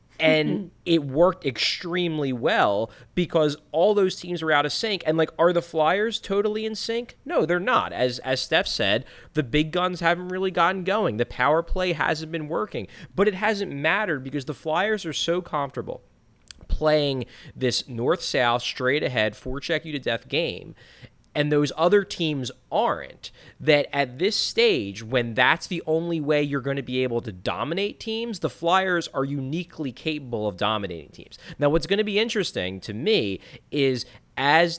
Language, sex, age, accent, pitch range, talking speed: English, male, 30-49, American, 115-165 Hz, 165 wpm